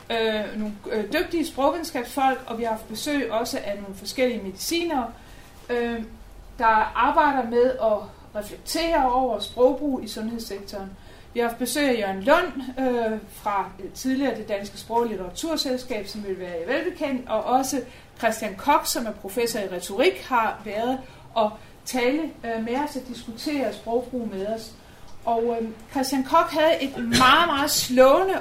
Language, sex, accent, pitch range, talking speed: Danish, female, native, 225-285 Hz, 145 wpm